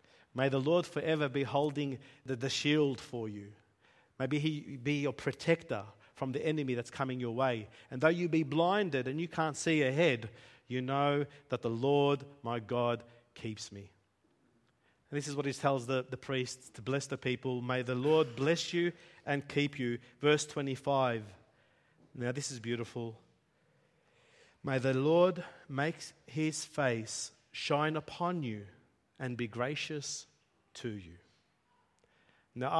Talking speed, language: 150 wpm, English